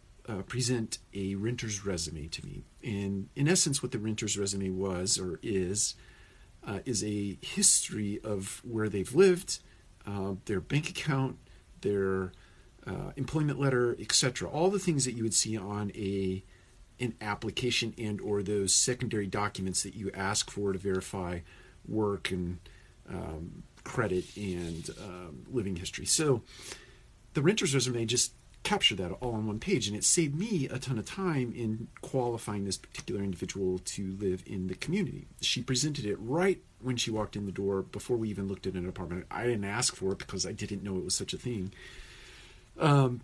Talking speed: 175 wpm